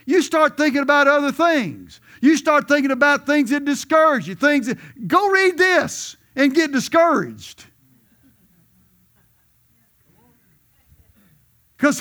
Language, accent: English, American